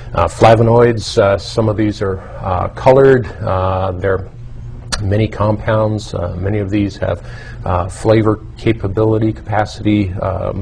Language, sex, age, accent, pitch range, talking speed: English, male, 40-59, American, 95-110 Hz, 135 wpm